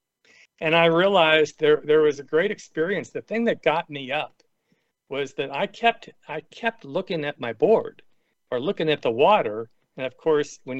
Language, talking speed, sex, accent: English, 190 wpm, male, American